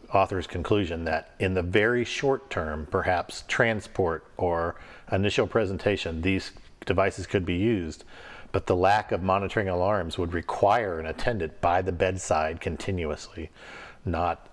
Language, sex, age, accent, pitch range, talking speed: English, male, 50-69, American, 90-110 Hz, 135 wpm